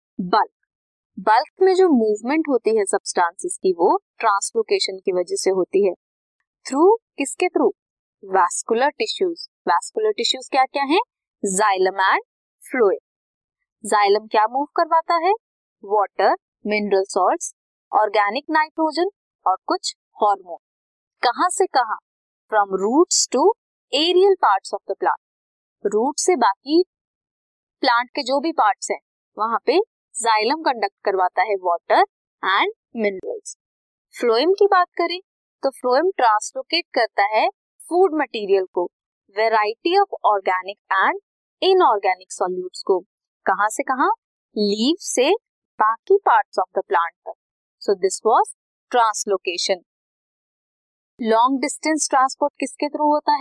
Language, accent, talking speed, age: Hindi, native, 90 wpm, 20-39